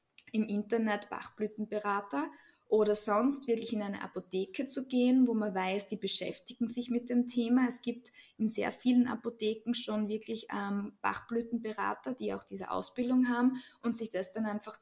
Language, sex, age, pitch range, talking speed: German, female, 20-39, 195-235 Hz, 160 wpm